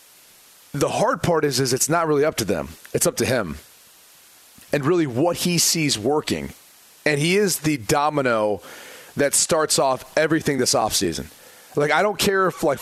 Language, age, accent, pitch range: English, 30-49, American, 140-190 Hz